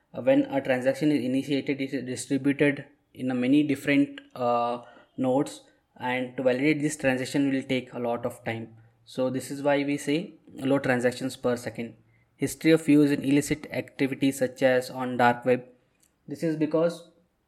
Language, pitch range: English, 125-145 Hz